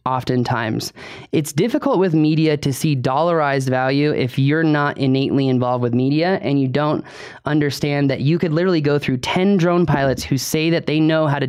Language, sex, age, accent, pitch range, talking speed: English, male, 20-39, American, 140-200 Hz, 190 wpm